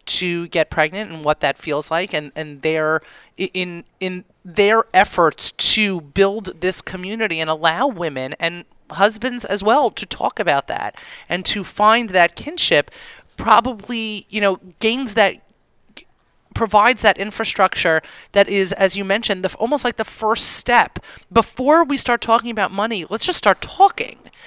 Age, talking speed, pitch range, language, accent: 30-49, 155 wpm, 165-220 Hz, English, American